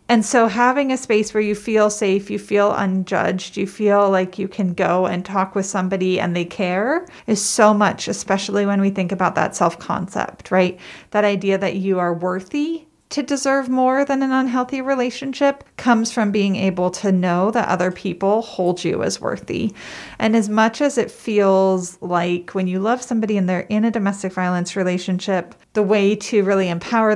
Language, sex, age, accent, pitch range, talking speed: English, female, 40-59, American, 185-225 Hz, 190 wpm